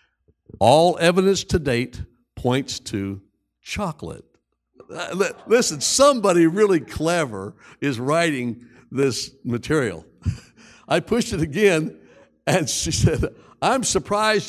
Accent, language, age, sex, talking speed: American, English, 60-79, male, 100 wpm